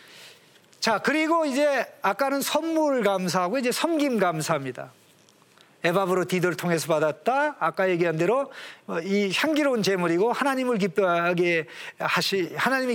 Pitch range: 170-240 Hz